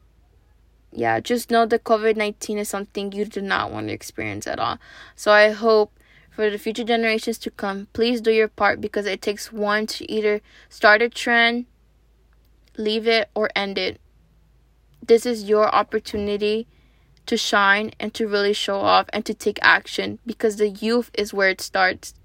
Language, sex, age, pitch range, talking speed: English, female, 20-39, 150-220 Hz, 175 wpm